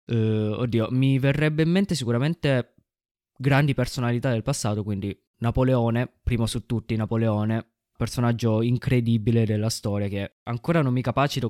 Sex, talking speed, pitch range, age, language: male, 130 wpm, 110-130 Hz, 20-39, Italian